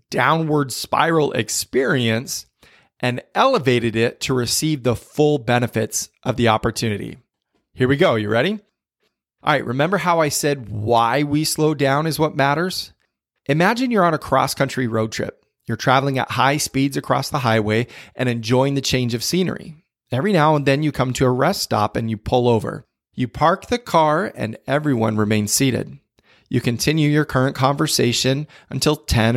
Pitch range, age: 120-155 Hz, 30-49